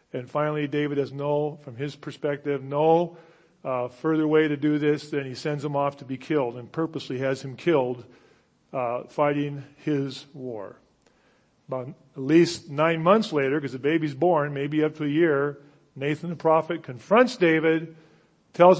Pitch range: 140-165 Hz